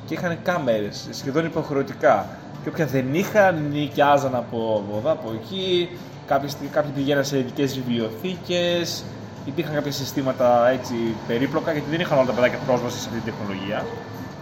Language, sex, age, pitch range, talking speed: Greek, male, 20-39, 130-185 Hz, 145 wpm